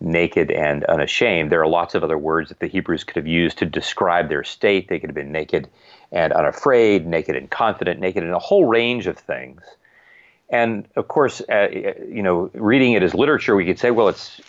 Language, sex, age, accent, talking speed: English, male, 40-59, American, 210 wpm